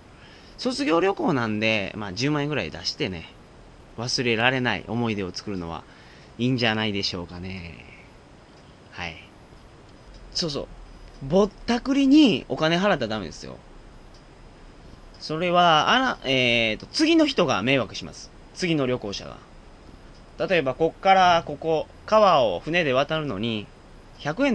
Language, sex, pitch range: Japanese, male, 105-170 Hz